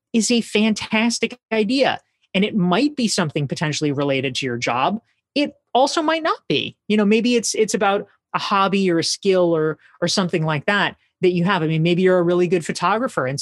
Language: English